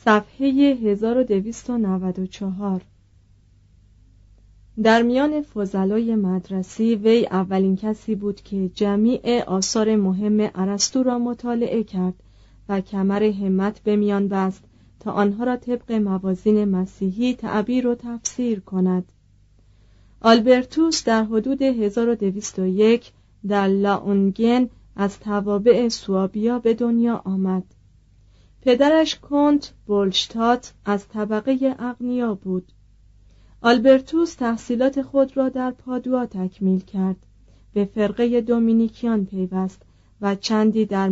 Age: 30-49